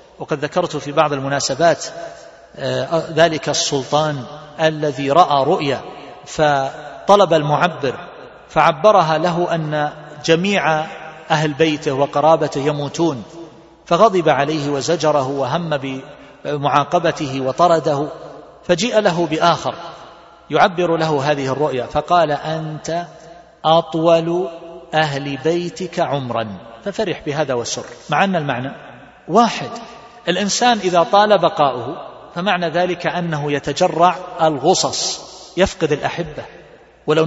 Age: 40-59